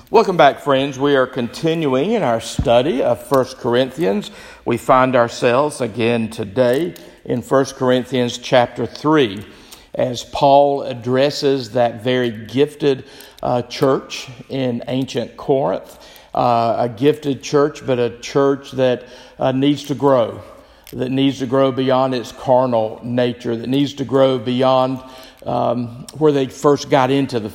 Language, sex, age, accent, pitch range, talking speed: English, male, 50-69, American, 120-140 Hz, 140 wpm